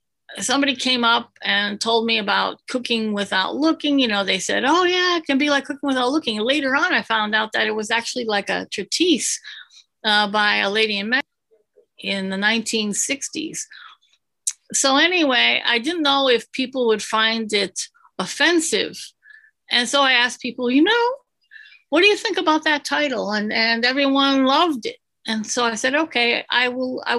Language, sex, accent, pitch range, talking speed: English, female, American, 225-295 Hz, 185 wpm